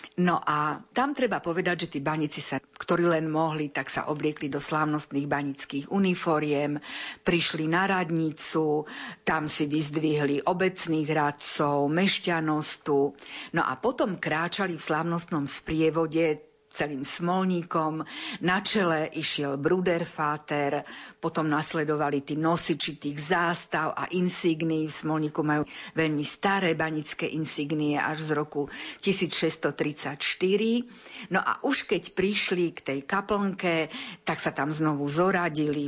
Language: Slovak